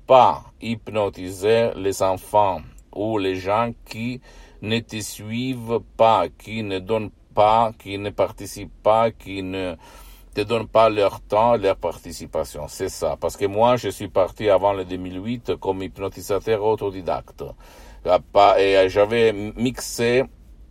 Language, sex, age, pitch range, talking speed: Italian, male, 50-69, 90-115 Hz, 135 wpm